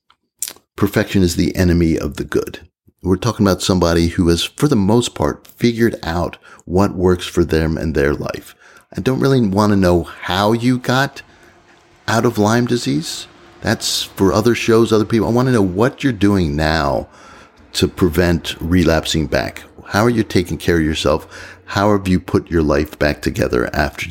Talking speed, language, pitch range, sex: 180 wpm, English, 75-100 Hz, male